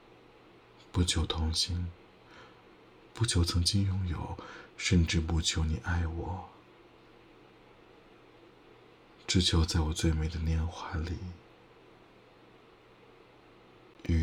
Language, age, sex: Chinese, 60-79, male